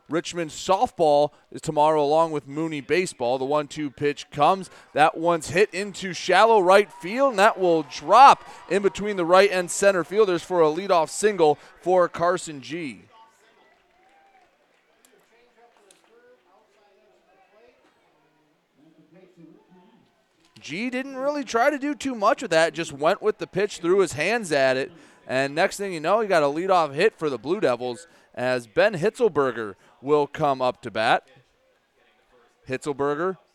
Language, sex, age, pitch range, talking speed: English, male, 30-49, 145-200 Hz, 145 wpm